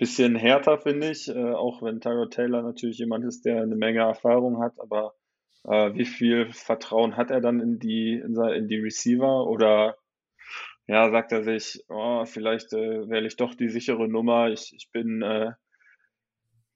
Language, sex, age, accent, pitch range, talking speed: German, male, 20-39, German, 110-120 Hz, 170 wpm